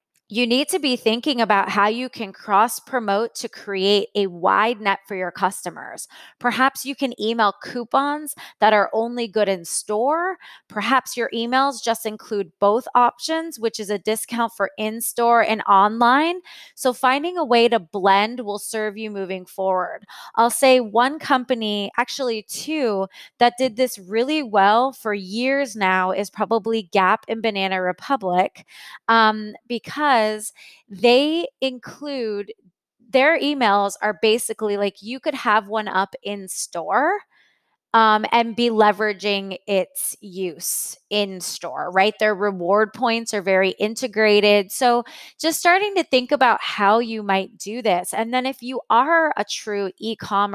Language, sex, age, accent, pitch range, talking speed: English, female, 20-39, American, 200-255 Hz, 150 wpm